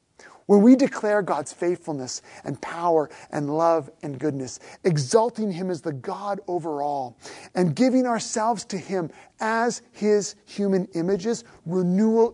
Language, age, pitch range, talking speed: English, 40-59, 170-230 Hz, 135 wpm